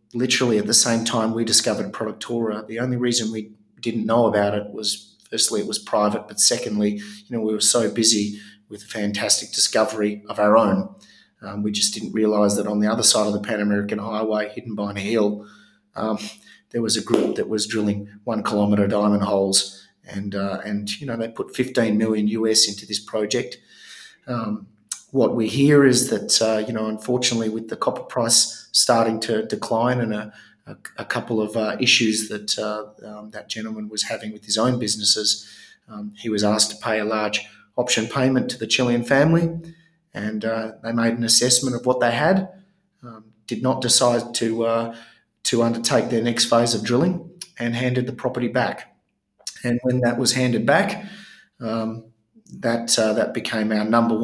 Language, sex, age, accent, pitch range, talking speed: English, male, 30-49, Australian, 105-120 Hz, 190 wpm